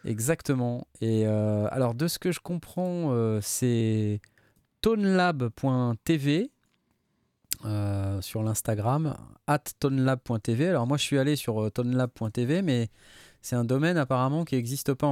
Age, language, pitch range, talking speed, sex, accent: 20-39, French, 105-135 Hz, 120 wpm, male, French